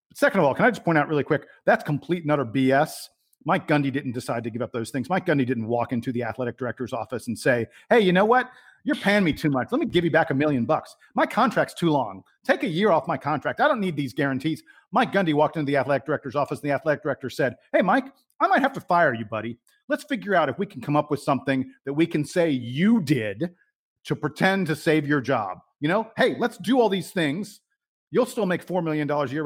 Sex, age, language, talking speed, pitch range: male, 40-59, English, 255 wpm, 135-180 Hz